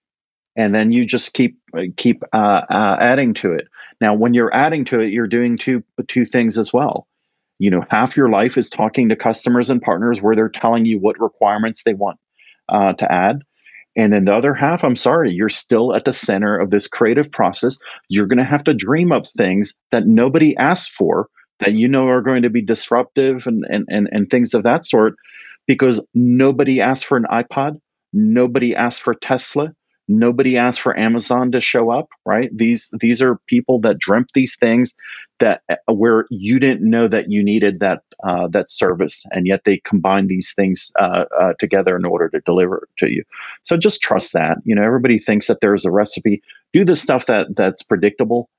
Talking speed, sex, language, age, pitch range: 200 wpm, male, English, 40-59, 105-130 Hz